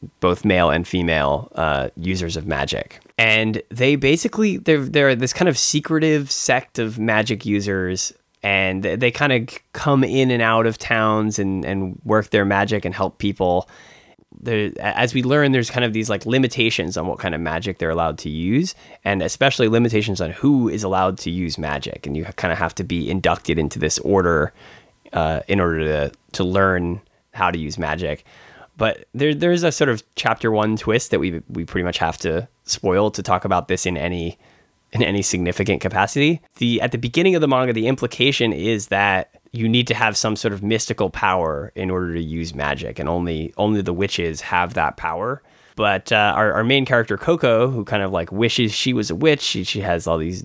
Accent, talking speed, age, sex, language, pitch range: American, 205 wpm, 20-39, male, English, 90-120 Hz